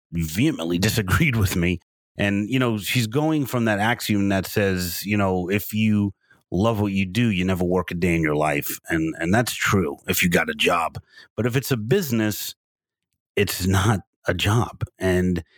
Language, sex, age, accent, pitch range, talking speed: English, male, 30-49, American, 90-115 Hz, 190 wpm